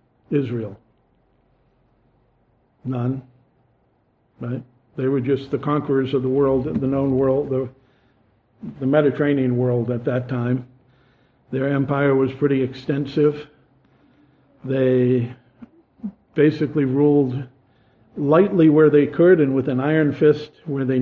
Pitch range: 125-155 Hz